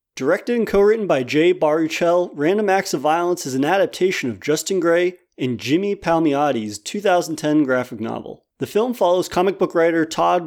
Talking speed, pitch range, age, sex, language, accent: 165 wpm, 130-185 Hz, 30-49, male, English, American